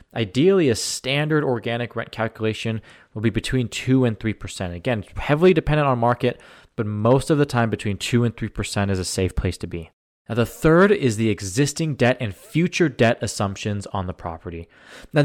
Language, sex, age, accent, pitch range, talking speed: English, male, 20-39, American, 110-140 Hz, 185 wpm